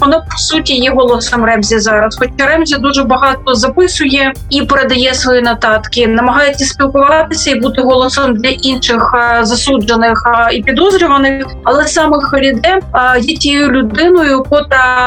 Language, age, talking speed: Ukrainian, 30-49, 130 wpm